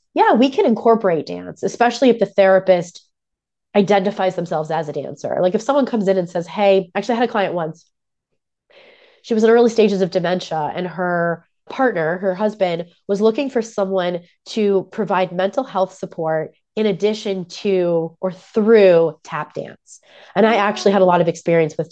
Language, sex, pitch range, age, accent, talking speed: English, female, 175-215 Hz, 20-39, American, 180 wpm